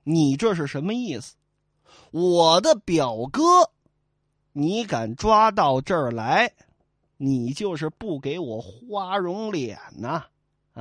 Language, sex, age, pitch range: Chinese, male, 30-49, 135-215 Hz